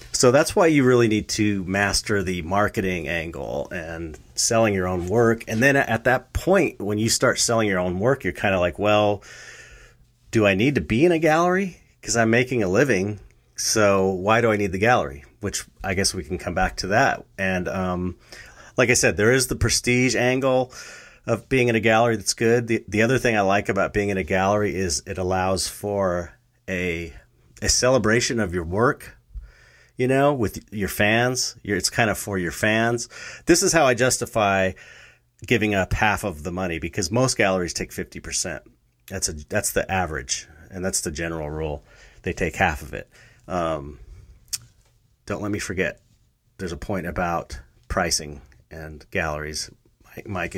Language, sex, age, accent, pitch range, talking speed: English, male, 30-49, American, 90-115 Hz, 185 wpm